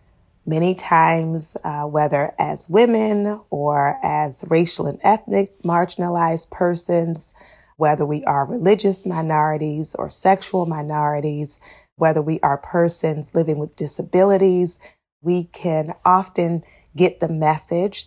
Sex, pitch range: female, 150-180 Hz